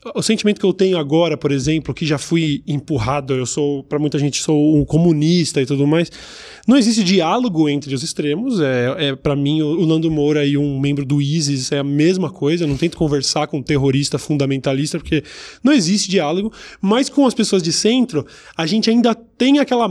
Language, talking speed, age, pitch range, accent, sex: Portuguese, 200 wpm, 20-39, 155-215 Hz, Brazilian, male